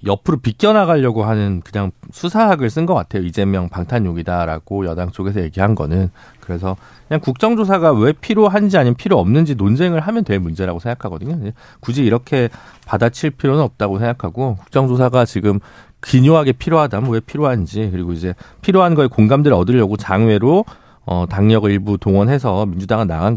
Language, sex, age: Korean, male, 40-59